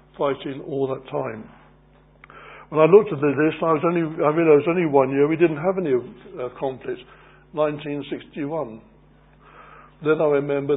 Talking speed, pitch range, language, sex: 150 wpm, 135-165 Hz, English, male